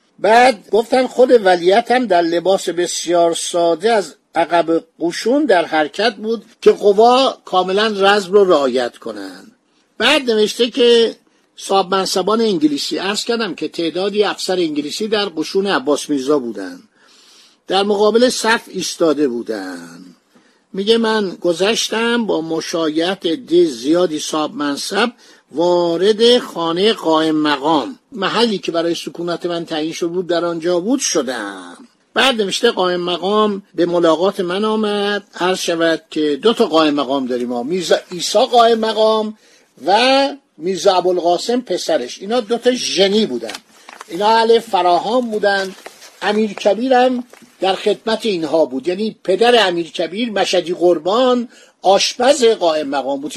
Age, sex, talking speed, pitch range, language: 50-69, male, 130 wpm, 170-230 Hz, Persian